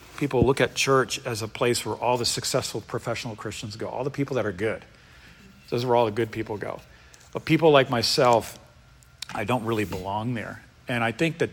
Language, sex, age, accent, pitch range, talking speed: English, male, 40-59, American, 115-135 Hz, 210 wpm